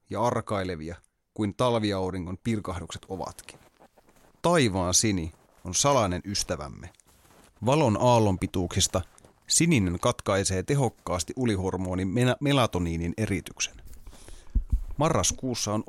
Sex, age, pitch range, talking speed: male, 30-49, 90-115 Hz, 80 wpm